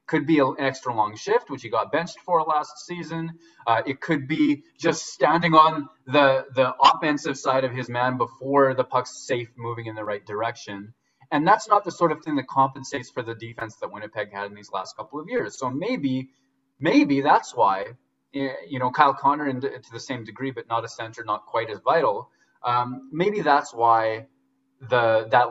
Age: 20-39